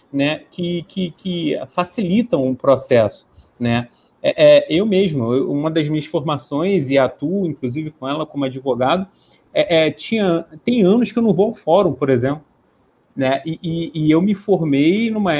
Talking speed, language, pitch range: 170 wpm, Portuguese, 140-190 Hz